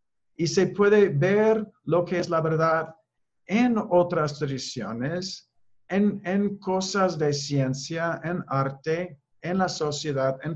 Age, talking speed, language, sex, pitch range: 50-69, 130 wpm, Spanish, male, 140-180 Hz